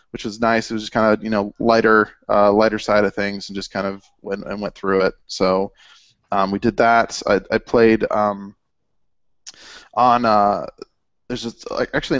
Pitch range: 105-120 Hz